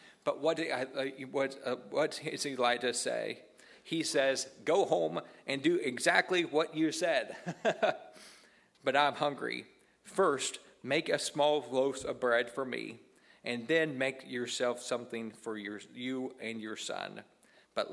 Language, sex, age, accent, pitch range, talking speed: English, male, 40-59, American, 110-135 Hz, 150 wpm